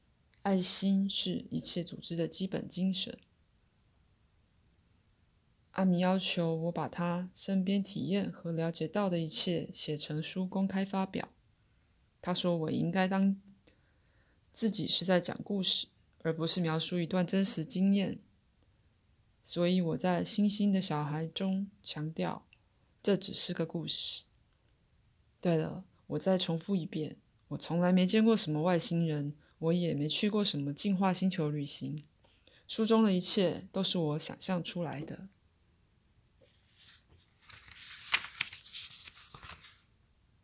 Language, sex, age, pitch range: Chinese, female, 20-39, 155-190 Hz